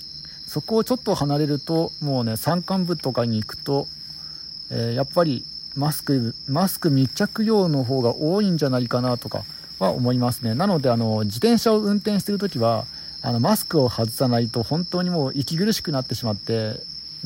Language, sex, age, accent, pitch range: Japanese, male, 50-69, native, 115-170 Hz